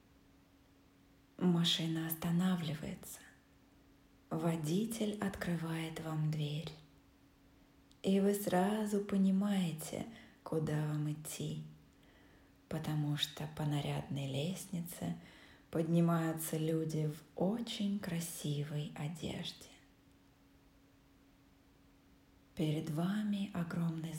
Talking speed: 65 wpm